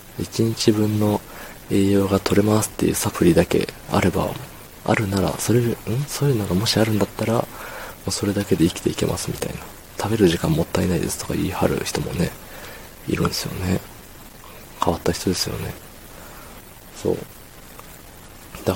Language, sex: Japanese, male